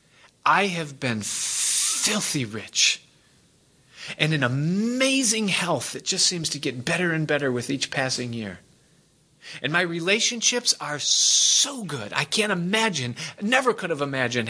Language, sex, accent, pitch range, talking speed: English, male, American, 125-175 Hz, 140 wpm